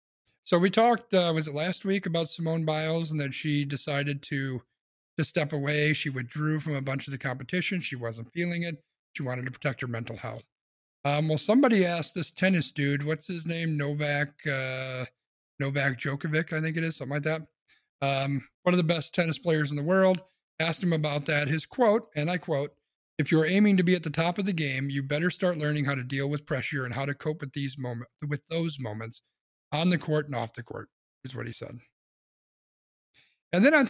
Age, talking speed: 40-59, 215 wpm